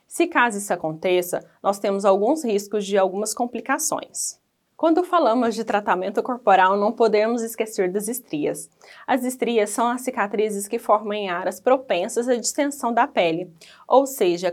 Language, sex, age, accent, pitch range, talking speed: Portuguese, female, 20-39, Brazilian, 190-255 Hz, 155 wpm